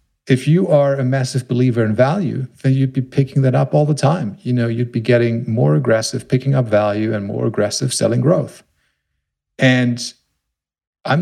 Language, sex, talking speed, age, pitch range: English, male, 180 wpm, 50-69, 105-130 Hz